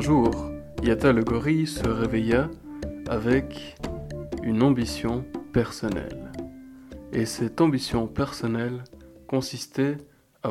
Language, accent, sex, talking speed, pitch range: French, French, male, 95 wpm, 115-140 Hz